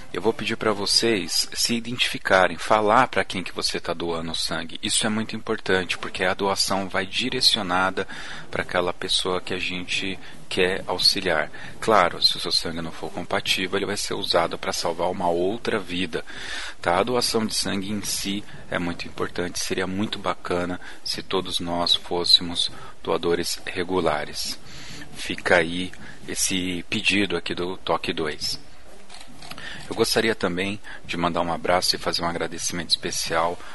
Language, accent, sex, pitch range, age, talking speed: Portuguese, Brazilian, male, 85-100 Hz, 40-59, 160 wpm